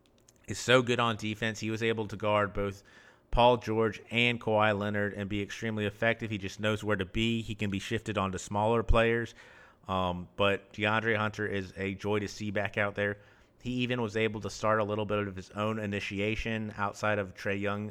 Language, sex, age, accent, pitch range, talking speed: English, male, 30-49, American, 100-110 Hz, 210 wpm